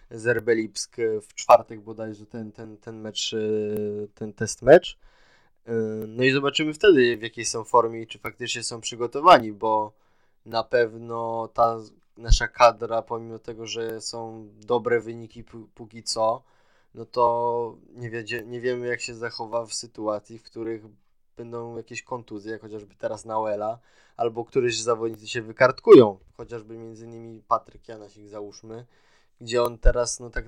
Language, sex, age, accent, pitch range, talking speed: Polish, male, 20-39, native, 110-120 Hz, 145 wpm